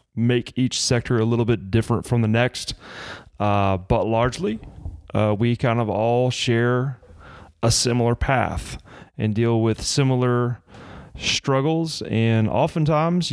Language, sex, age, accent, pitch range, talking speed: English, male, 30-49, American, 110-125 Hz, 130 wpm